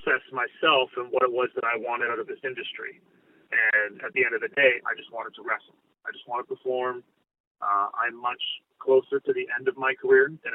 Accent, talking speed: American, 230 wpm